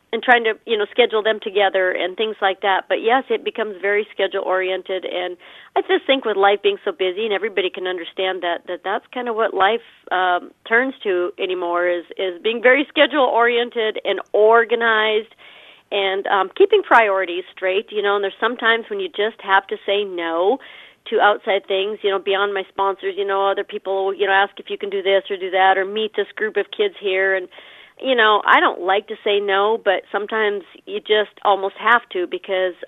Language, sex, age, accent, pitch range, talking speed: English, female, 40-59, American, 195-230 Hz, 210 wpm